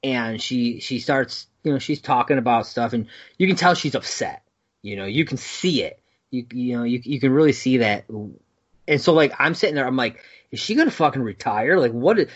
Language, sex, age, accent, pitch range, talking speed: English, male, 30-49, American, 115-155 Hz, 230 wpm